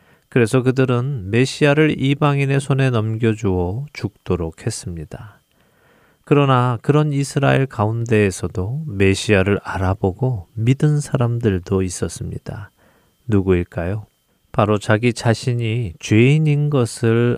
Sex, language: male, Korean